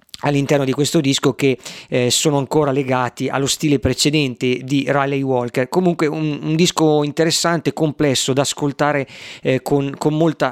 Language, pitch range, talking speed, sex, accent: Italian, 130-155 Hz, 155 wpm, male, native